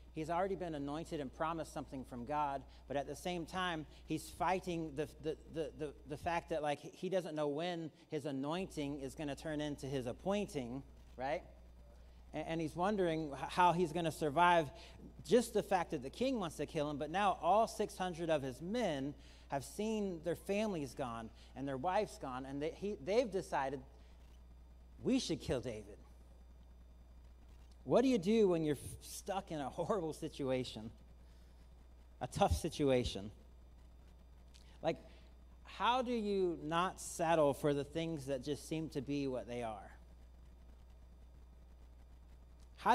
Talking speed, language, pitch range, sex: 160 wpm, English, 115-175 Hz, male